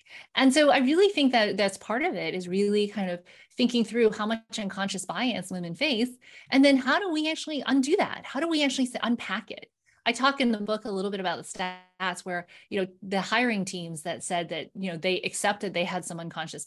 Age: 20-39